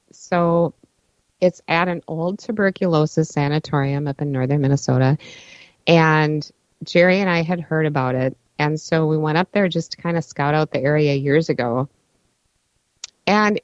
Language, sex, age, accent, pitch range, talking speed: English, female, 50-69, American, 150-185 Hz, 160 wpm